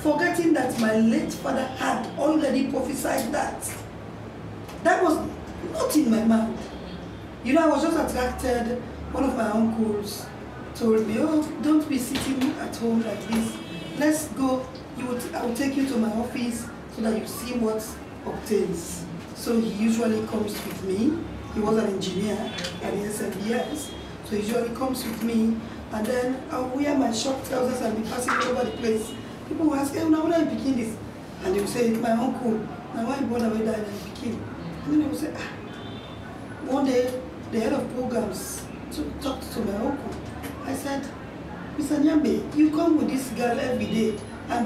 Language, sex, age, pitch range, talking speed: English, female, 40-59, 225-275 Hz, 185 wpm